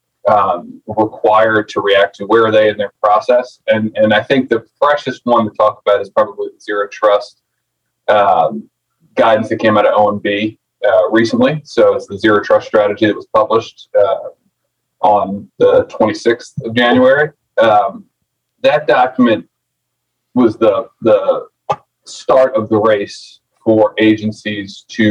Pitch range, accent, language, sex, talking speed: 105-135 Hz, American, English, male, 150 wpm